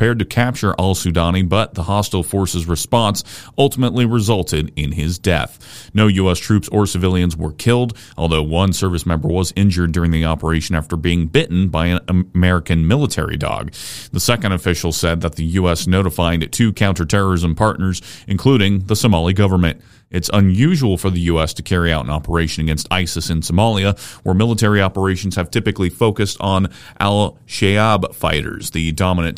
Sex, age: male, 30-49